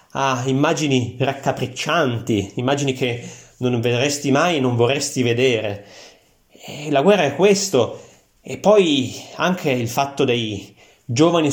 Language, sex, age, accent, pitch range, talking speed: Italian, male, 30-49, native, 115-145 Hz, 130 wpm